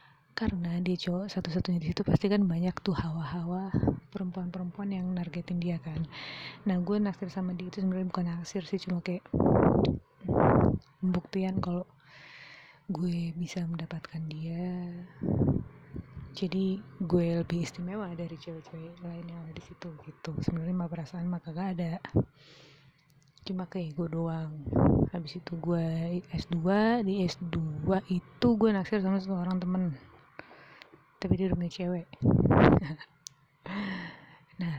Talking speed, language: 125 wpm, Indonesian